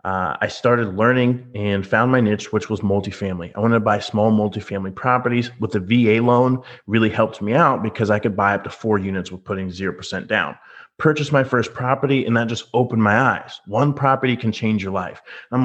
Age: 30-49